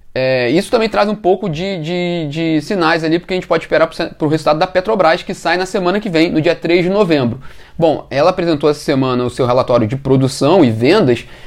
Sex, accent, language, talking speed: male, Brazilian, Portuguese, 220 wpm